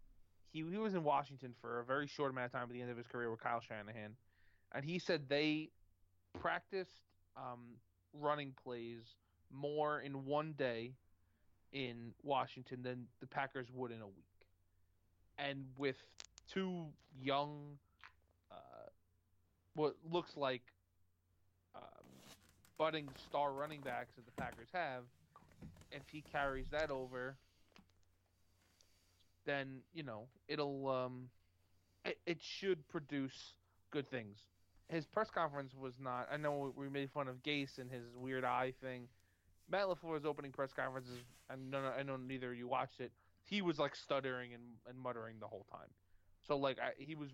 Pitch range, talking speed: 95-140 Hz, 155 wpm